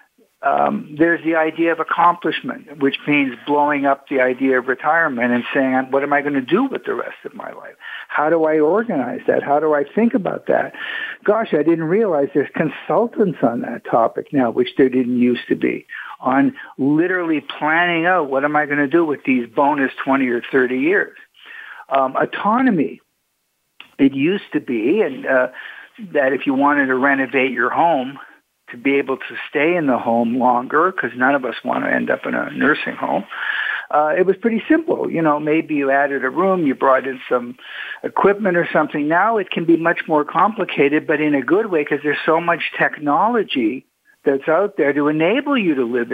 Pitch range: 135-185 Hz